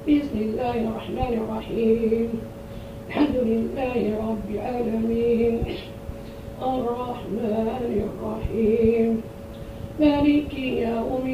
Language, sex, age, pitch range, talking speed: Arabic, female, 40-59, 225-270 Hz, 70 wpm